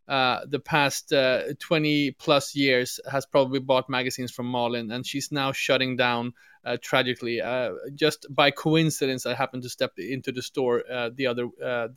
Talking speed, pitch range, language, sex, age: 175 wpm, 125-145 Hz, English, male, 20-39